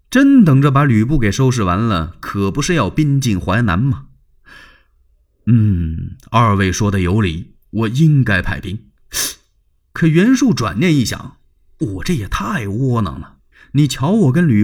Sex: male